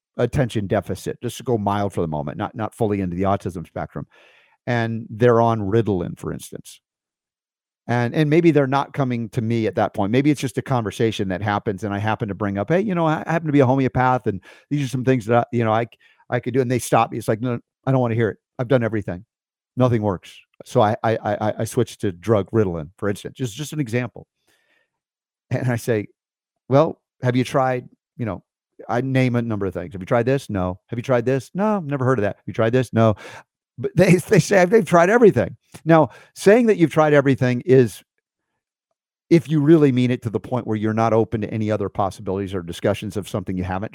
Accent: American